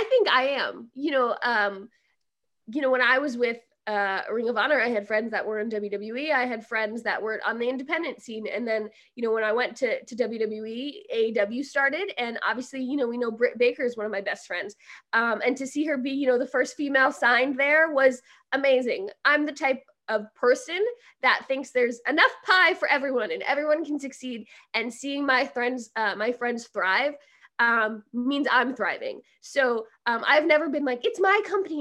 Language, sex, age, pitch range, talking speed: English, female, 20-39, 230-305 Hz, 210 wpm